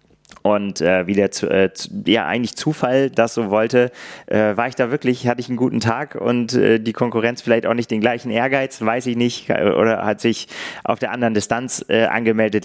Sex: male